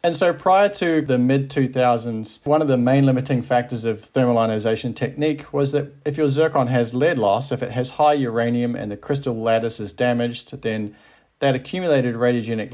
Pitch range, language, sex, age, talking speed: 110-140 Hz, English, male, 40-59, 185 wpm